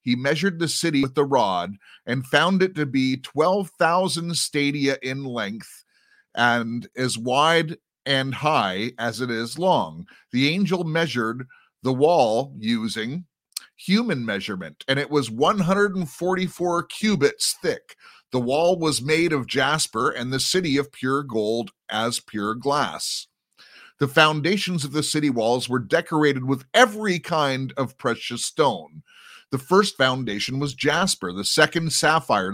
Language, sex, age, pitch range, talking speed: English, male, 30-49, 130-175 Hz, 140 wpm